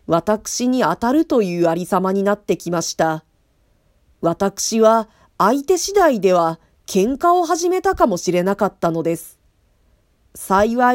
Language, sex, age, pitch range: Japanese, female, 40-59, 175-285 Hz